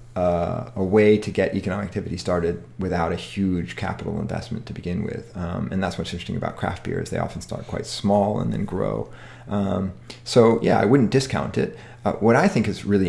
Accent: American